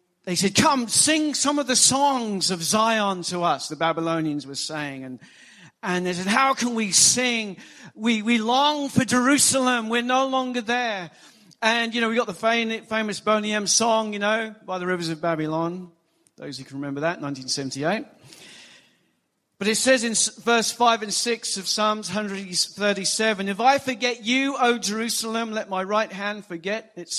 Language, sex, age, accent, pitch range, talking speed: English, male, 50-69, British, 160-230 Hz, 175 wpm